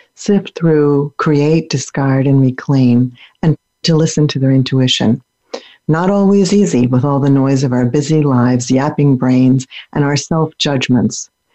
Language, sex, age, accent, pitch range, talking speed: English, female, 50-69, American, 130-165 Hz, 145 wpm